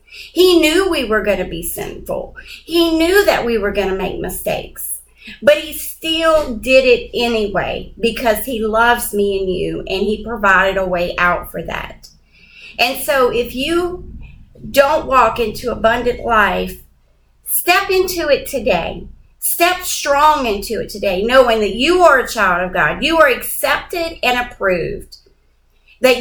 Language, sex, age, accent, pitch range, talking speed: English, female, 40-59, American, 190-295 Hz, 160 wpm